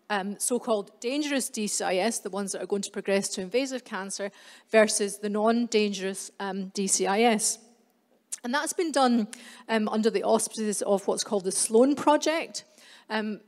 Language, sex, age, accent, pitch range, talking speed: English, female, 40-59, British, 200-235 Hz, 145 wpm